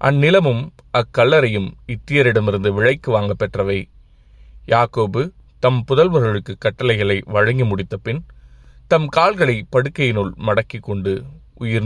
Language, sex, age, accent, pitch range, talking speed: Tamil, male, 30-49, native, 100-125 Hz, 95 wpm